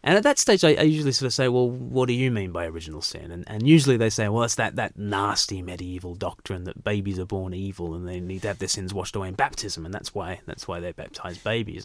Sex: male